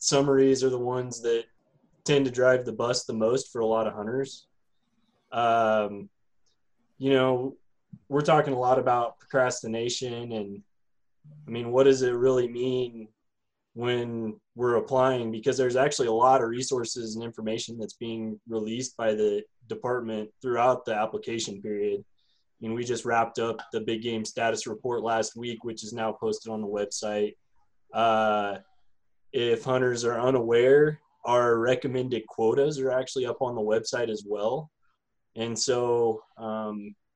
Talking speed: 155 wpm